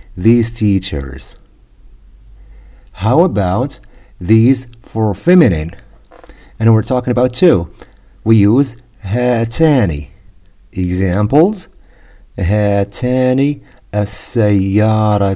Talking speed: 80 wpm